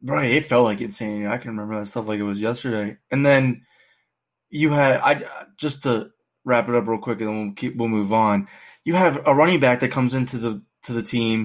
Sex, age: male, 20-39